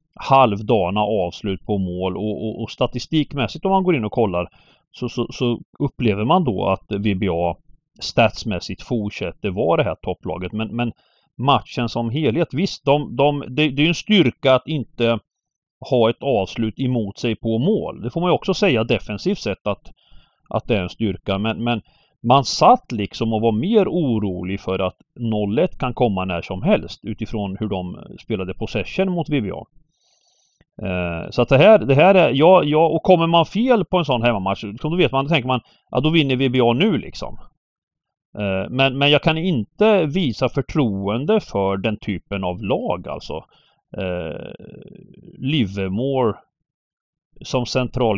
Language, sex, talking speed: Swedish, male, 165 wpm